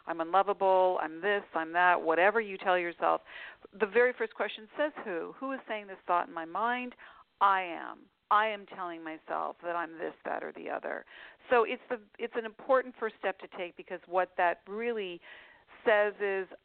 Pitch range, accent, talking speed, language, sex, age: 170-225 Hz, American, 190 wpm, English, female, 50-69